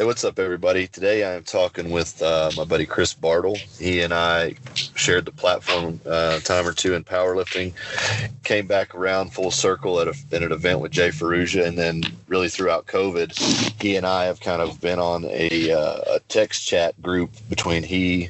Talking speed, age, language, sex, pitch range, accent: 200 wpm, 30-49, English, male, 80-90 Hz, American